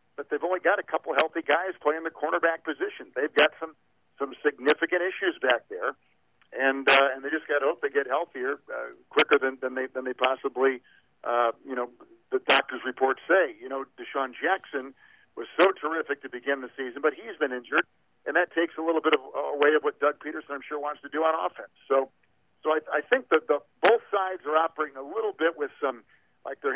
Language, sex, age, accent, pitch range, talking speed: English, male, 50-69, American, 135-165 Hz, 220 wpm